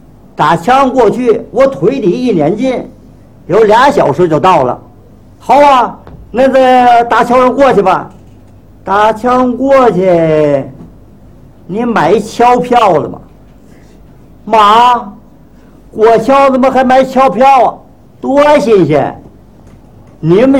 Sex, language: male, Chinese